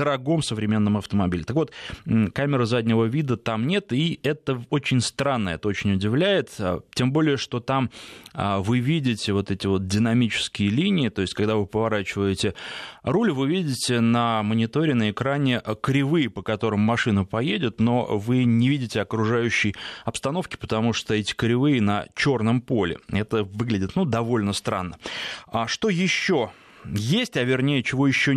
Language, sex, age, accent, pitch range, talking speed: Russian, male, 20-39, native, 105-135 Hz, 150 wpm